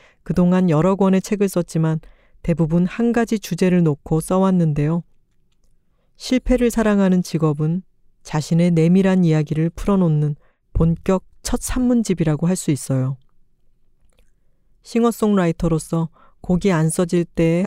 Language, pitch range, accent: Korean, 155-185 Hz, native